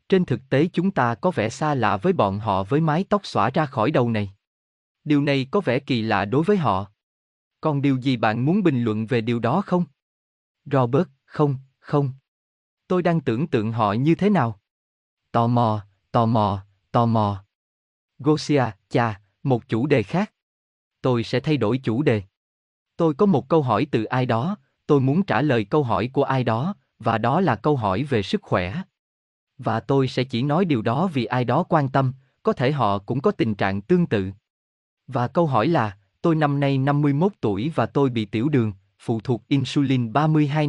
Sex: male